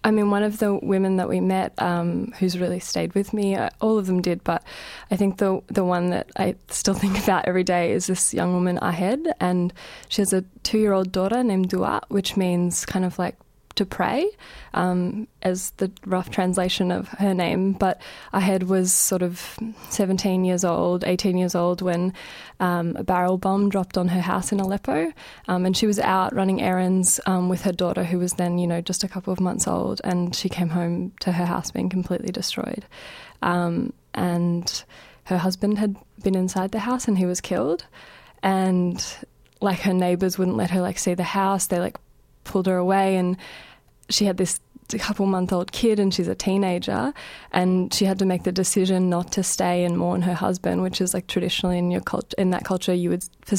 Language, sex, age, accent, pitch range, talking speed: English, female, 20-39, Australian, 180-195 Hz, 205 wpm